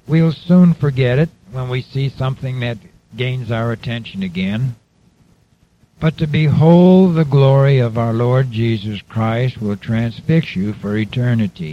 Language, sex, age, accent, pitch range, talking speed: English, male, 60-79, American, 110-155 Hz, 145 wpm